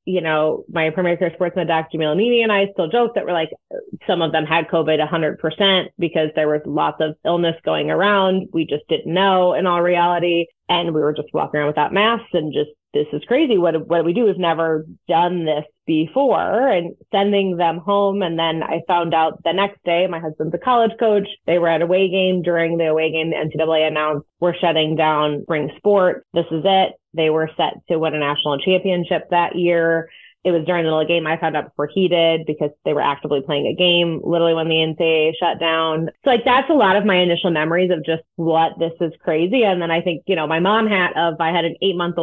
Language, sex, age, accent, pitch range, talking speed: English, female, 20-39, American, 160-185 Hz, 230 wpm